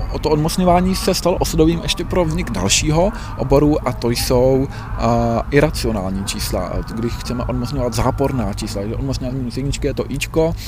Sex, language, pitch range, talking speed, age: male, Czech, 115-145 Hz, 150 wpm, 20-39